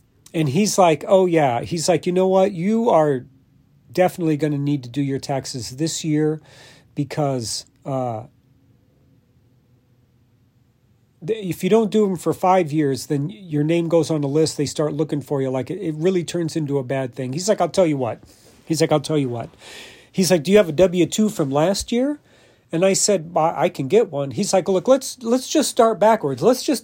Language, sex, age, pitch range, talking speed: English, male, 40-59, 135-190 Hz, 210 wpm